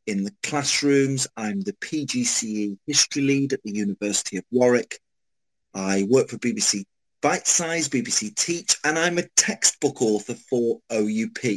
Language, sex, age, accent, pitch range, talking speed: English, male, 40-59, British, 115-175 Hz, 145 wpm